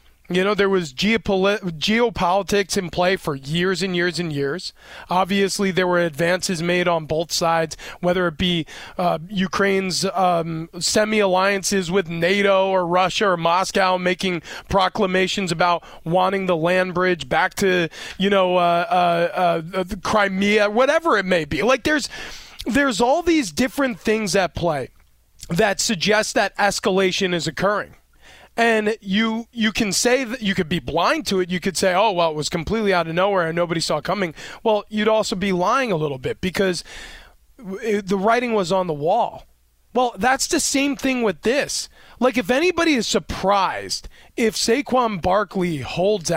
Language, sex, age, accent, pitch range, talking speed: English, male, 20-39, American, 180-220 Hz, 165 wpm